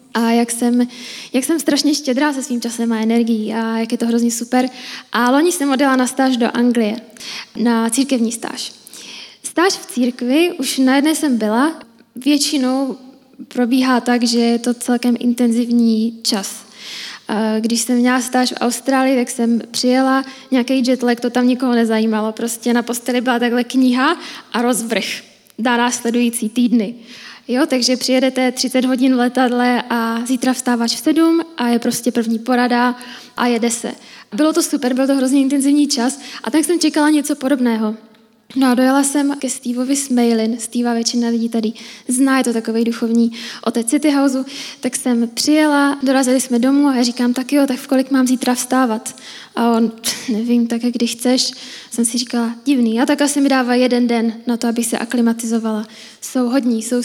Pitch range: 235-265 Hz